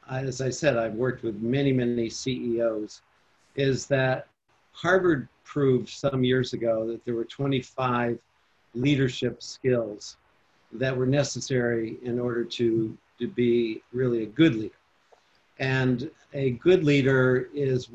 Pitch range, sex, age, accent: 120-140 Hz, male, 50-69, American